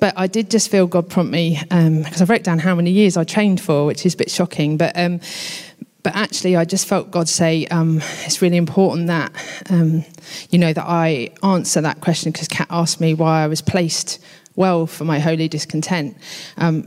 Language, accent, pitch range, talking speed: English, British, 160-180 Hz, 215 wpm